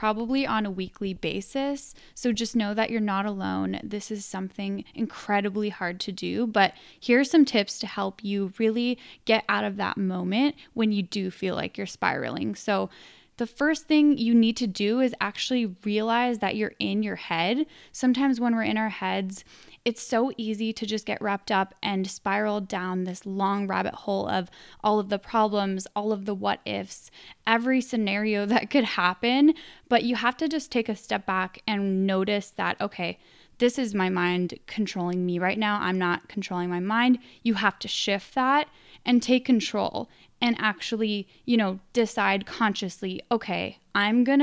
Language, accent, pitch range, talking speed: English, American, 195-235 Hz, 180 wpm